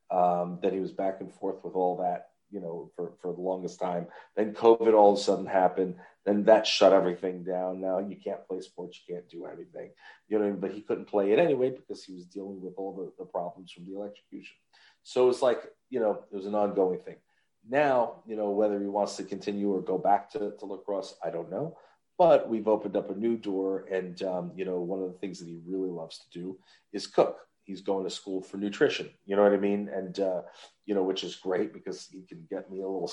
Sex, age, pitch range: male, 40-59, 90-105 Hz